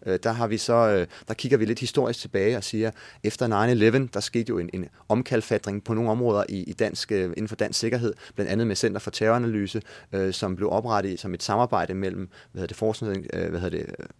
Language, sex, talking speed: Danish, male, 205 wpm